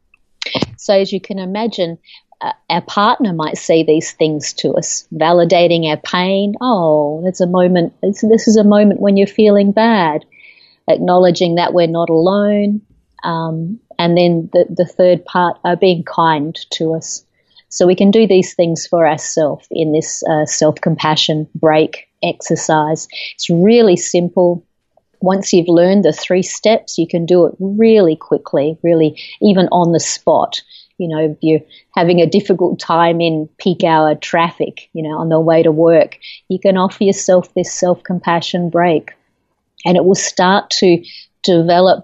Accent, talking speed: Australian, 165 wpm